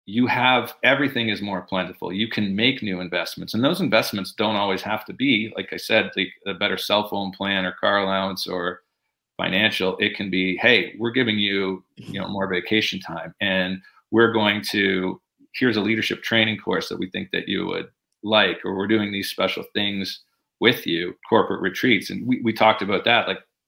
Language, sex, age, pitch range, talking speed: English, male, 40-59, 95-110 Hz, 200 wpm